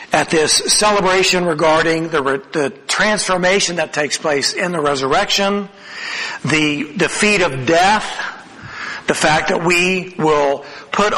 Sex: male